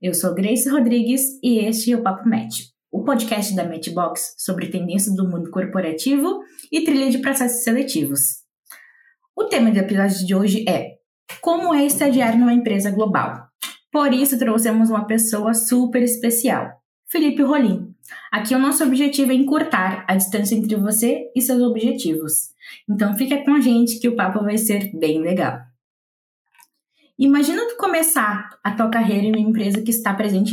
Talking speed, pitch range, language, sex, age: 165 wpm, 185-250 Hz, Portuguese, female, 20-39